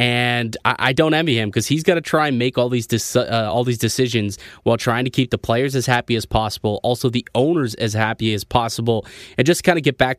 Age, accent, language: 20-39, American, English